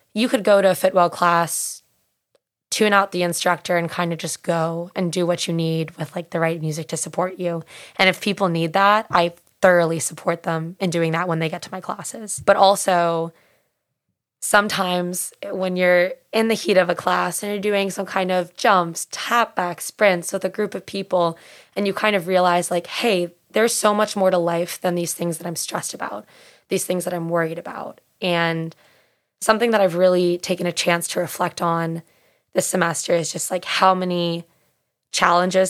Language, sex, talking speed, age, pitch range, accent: English, female, 200 wpm, 20-39, 170-195 Hz, American